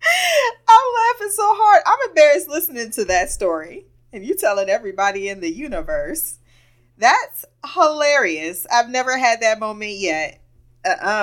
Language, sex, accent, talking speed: English, female, American, 140 wpm